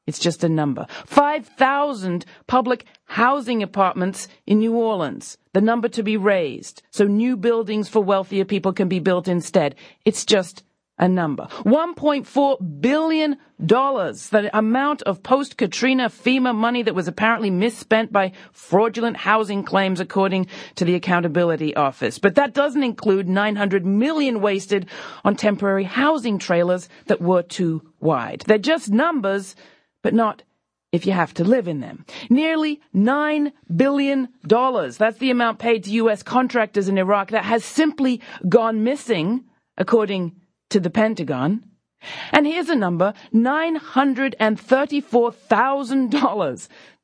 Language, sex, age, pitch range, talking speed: English, female, 40-59, 195-255 Hz, 135 wpm